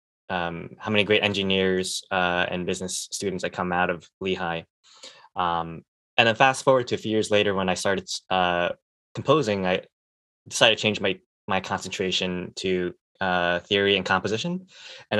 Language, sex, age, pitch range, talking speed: English, male, 10-29, 90-105 Hz, 165 wpm